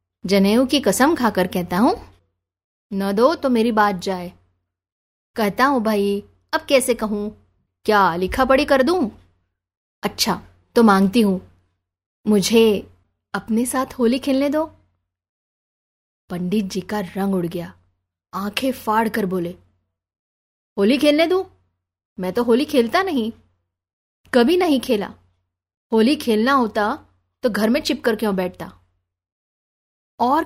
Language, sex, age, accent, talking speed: Hindi, female, 20-39, native, 125 wpm